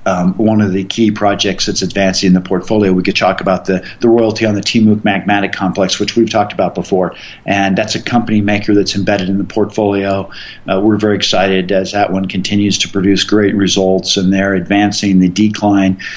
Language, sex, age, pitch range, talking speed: English, male, 50-69, 95-105 Hz, 205 wpm